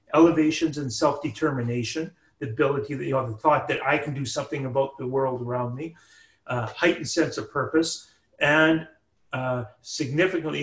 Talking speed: 145 wpm